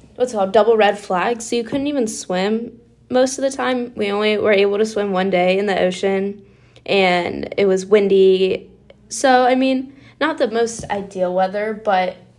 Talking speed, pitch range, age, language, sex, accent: 185 wpm, 190-220 Hz, 10-29, English, female, American